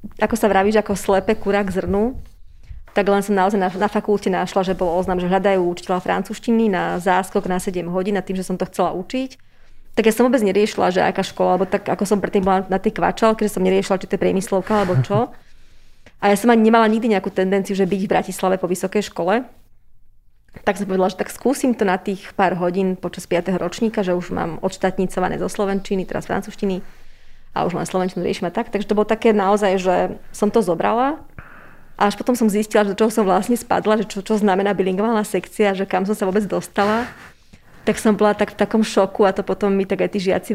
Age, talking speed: 30-49, 220 wpm